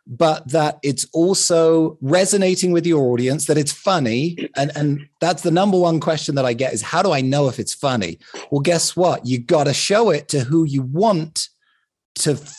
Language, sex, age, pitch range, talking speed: English, male, 30-49, 130-170 Hz, 200 wpm